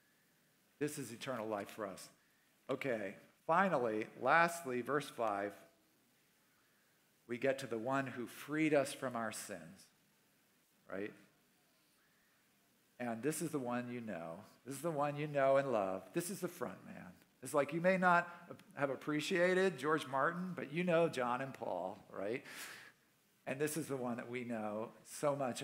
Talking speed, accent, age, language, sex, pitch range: 160 wpm, American, 50-69, English, male, 120-155 Hz